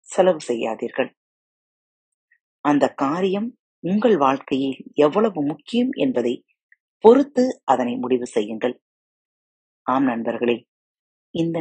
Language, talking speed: Tamil, 85 wpm